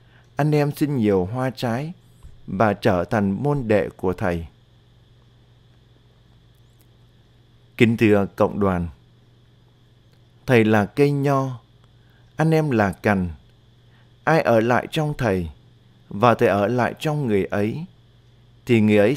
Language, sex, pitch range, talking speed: Vietnamese, male, 110-125 Hz, 125 wpm